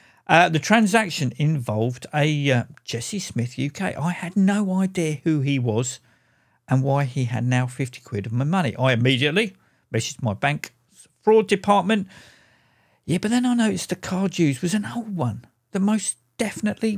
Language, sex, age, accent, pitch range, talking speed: English, male, 50-69, British, 125-185 Hz, 170 wpm